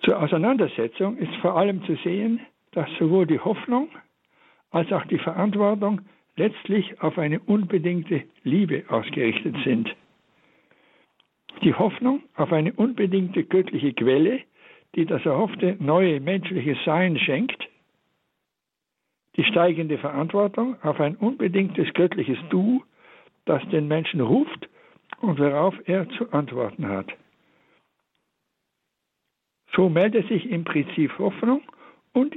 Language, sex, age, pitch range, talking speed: German, male, 60-79, 160-220 Hz, 115 wpm